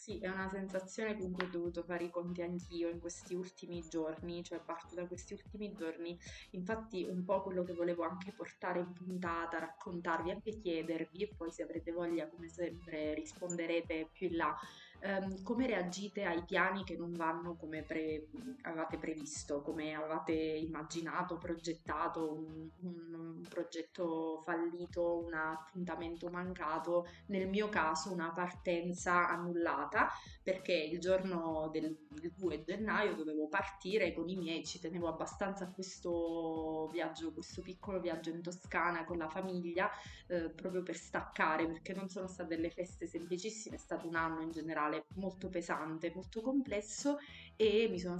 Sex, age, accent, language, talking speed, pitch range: female, 20-39, native, Italian, 150 wpm, 165-185 Hz